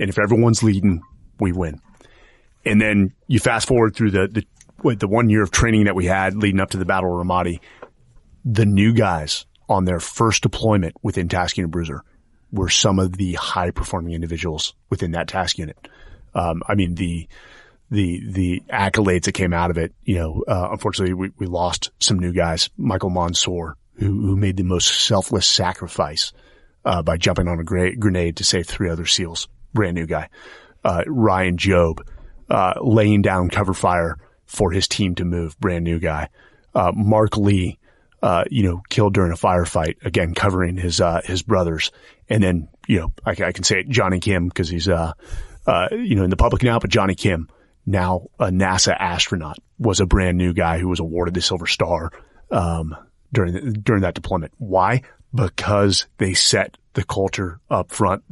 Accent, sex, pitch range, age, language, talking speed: American, male, 85-105 Hz, 30-49, English, 185 wpm